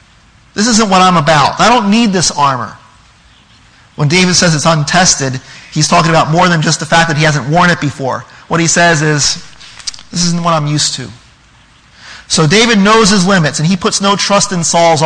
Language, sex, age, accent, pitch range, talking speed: English, male, 40-59, American, 150-200 Hz, 205 wpm